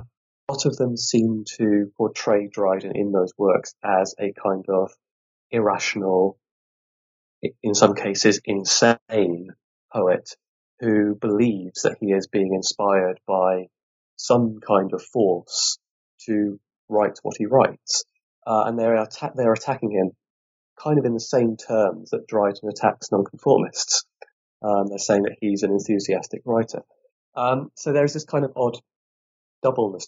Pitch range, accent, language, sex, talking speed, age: 95-115 Hz, British, English, male, 135 wpm, 20-39